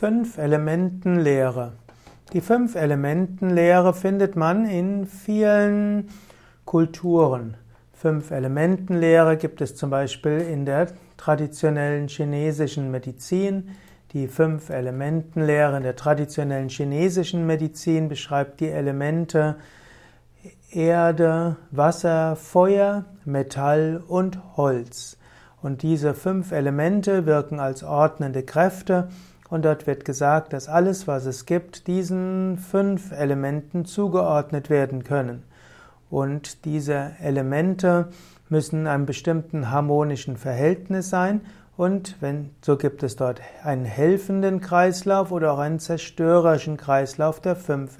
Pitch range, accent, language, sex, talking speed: 140-175 Hz, German, German, male, 110 wpm